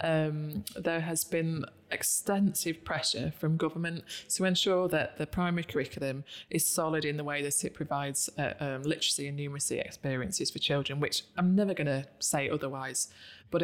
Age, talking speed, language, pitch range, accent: 20-39, 165 wpm, English, 145-170 Hz, British